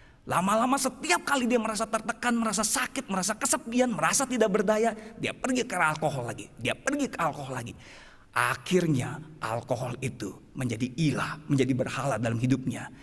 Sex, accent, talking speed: male, native, 145 wpm